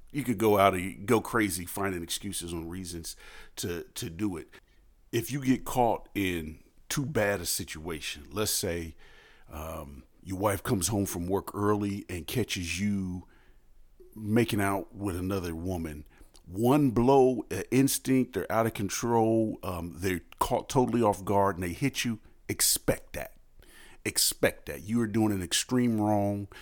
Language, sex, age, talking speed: English, male, 40-59, 160 wpm